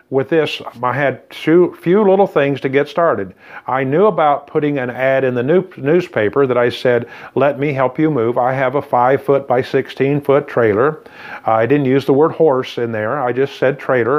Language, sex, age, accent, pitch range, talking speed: English, male, 50-69, American, 125-160 Hz, 210 wpm